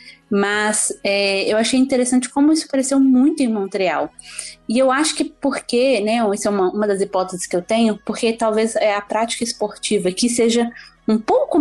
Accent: Brazilian